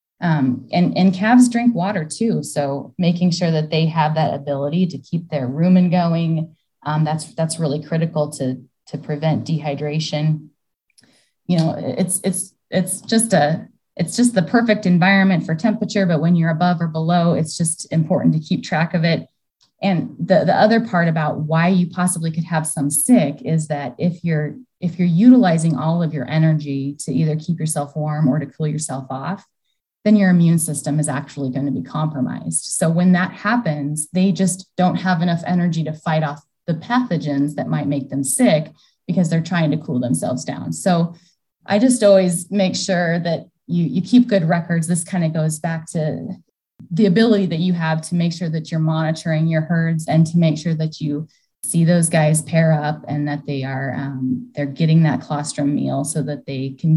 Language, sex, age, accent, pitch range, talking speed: English, female, 20-39, American, 150-180 Hz, 195 wpm